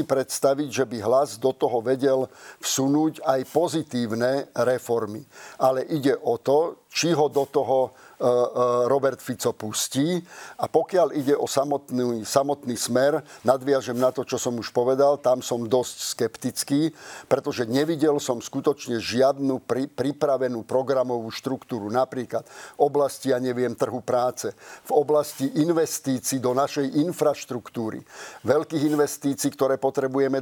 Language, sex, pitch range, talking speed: Slovak, male, 125-140 Hz, 130 wpm